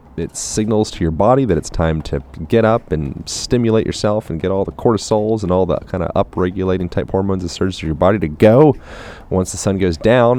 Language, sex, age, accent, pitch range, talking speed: English, male, 30-49, American, 80-105 Hz, 230 wpm